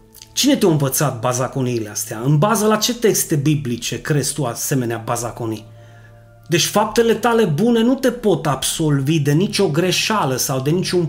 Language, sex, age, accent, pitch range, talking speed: Romanian, male, 30-49, native, 140-205 Hz, 160 wpm